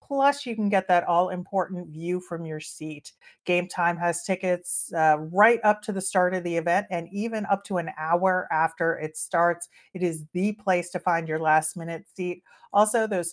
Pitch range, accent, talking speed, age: 165-200 Hz, American, 190 wpm, 40-59